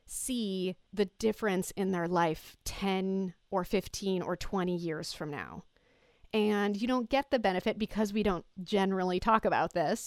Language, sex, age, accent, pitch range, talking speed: English, female, 30-49, American, 185-215 Hz, 160 wpm